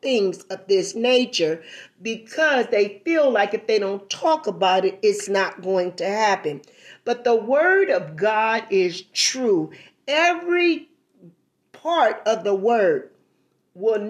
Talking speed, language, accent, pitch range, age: 135 wpm, English, American, 190-265 Hz, 40-59